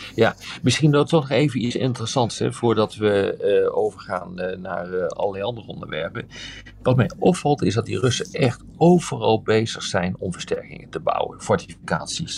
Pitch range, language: 100-140 Hz, Dutch